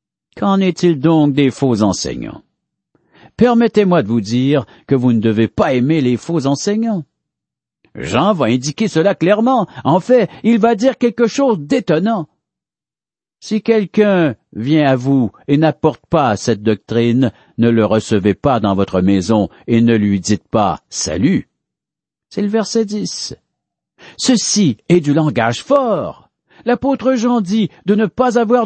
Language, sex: French, male